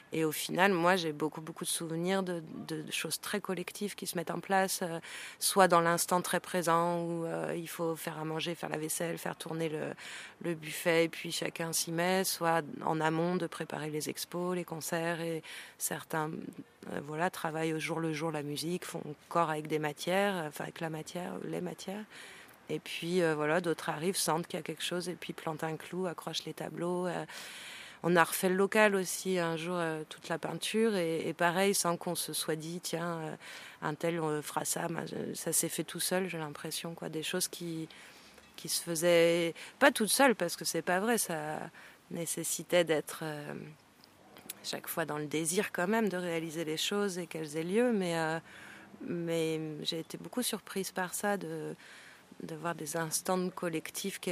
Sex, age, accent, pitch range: female, 30-49, French, 160-180 Hz